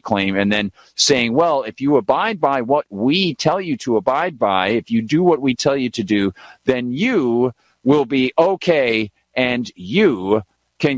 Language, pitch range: English, 105-145 Hz